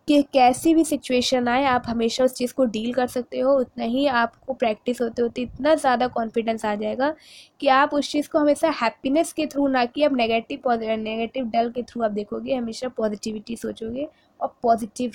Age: 20-39